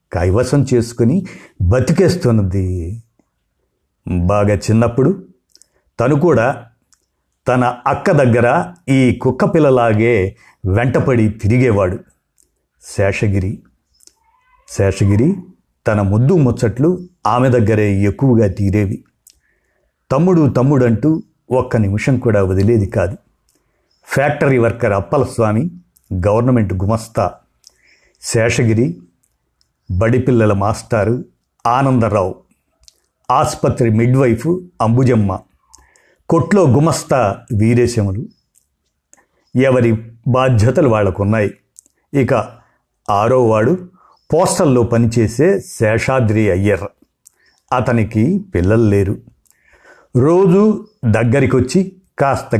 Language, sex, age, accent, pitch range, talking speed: Telugu, male, 50-69, native, 105-135 Hz, 70 wpm